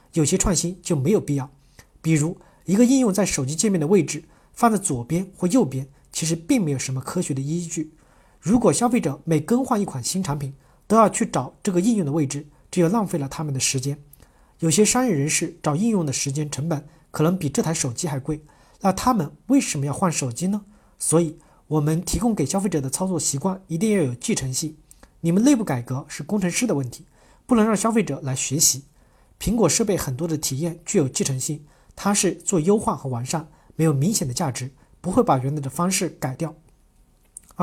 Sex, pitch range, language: male, 145-195 Hz, Chinese